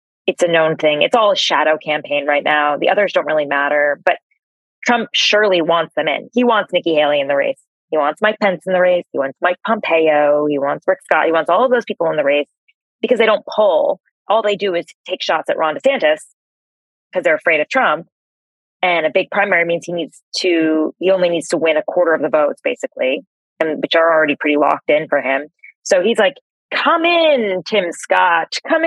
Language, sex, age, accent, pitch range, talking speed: English, female, 20-39, American, 155-210 Hz, 220 wpm